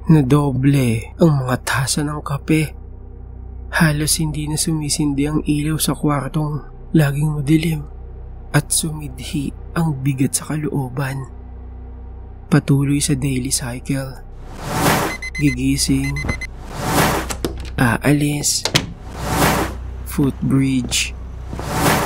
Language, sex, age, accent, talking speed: Filipino, male, 20-39, native, 80 wpm